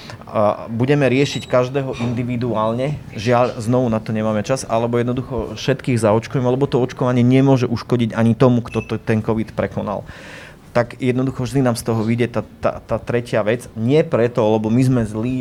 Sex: male